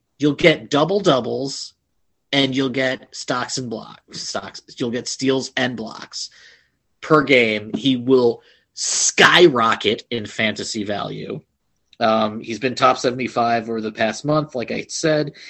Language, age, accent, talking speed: English, 30-49, American, 145 wpm